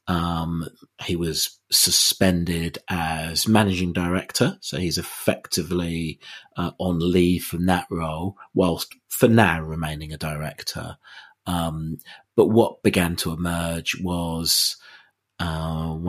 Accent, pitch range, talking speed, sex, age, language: British, 80-95 Hz, 110 wpm, male, 30-49, English